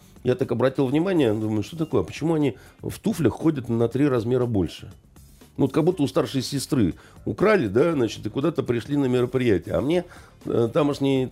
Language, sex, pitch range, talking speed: Russian, male, 110-145 Hz, 180 wpm